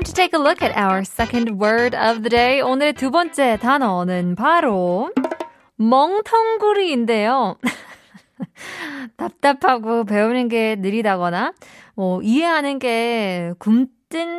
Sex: female